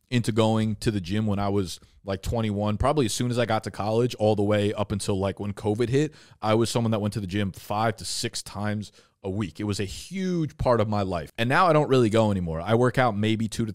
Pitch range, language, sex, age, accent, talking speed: 105-135 Hz, English, male, 20-39, American, 270 wpm